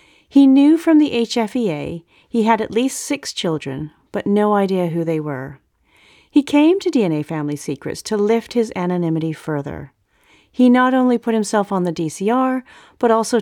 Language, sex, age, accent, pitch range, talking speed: English, female, 40-59, American, 155-225 Hz, 170 wpm